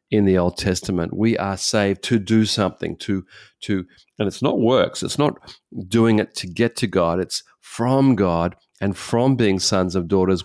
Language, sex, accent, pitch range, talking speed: English, male, Australian, 95-115 Hz, 190 wpm